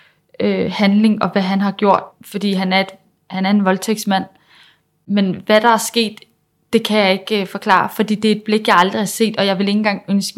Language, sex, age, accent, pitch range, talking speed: Danish, female, 20-39, native, 195-220 Hz, 215 wpm